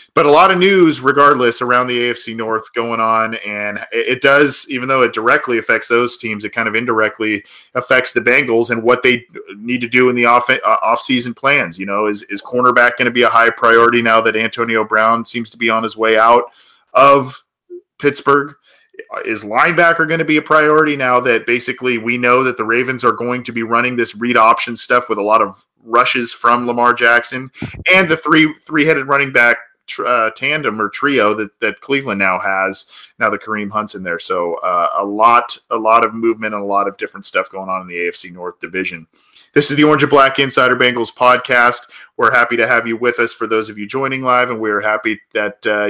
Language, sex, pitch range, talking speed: English, male, 110-135 Hz, 220 wpm